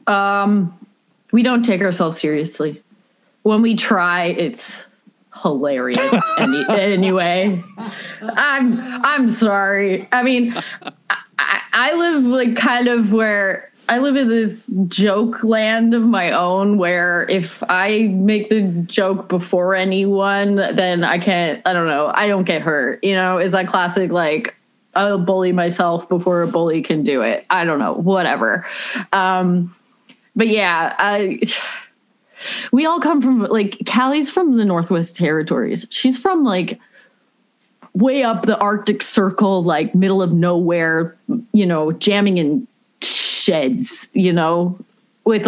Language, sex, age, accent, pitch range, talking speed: English, female, 20-39, American, 180-230 Hz, 135 wpm